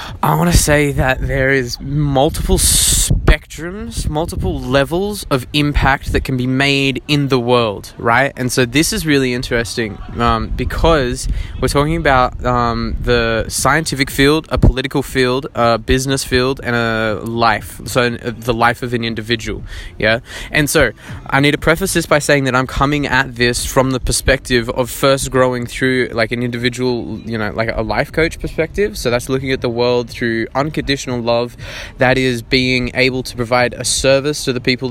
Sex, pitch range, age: male, 115-130 Hz, 20-39